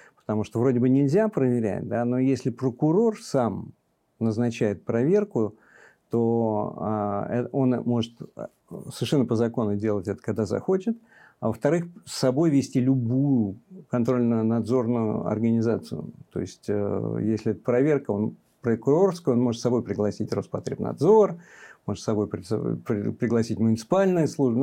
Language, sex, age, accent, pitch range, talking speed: Russian, male, 50-69, native, 110-135 Hz, 120 wpm